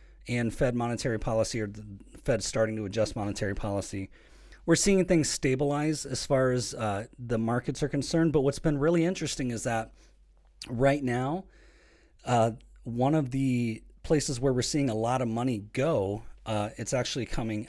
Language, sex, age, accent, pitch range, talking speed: English, male, 30-49, American, 110-150 Hz, 170 wpm